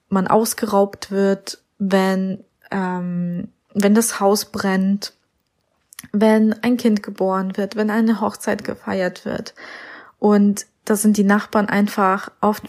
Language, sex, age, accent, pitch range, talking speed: German, female, 20-39, German, 190-215 Hz, 125 wpm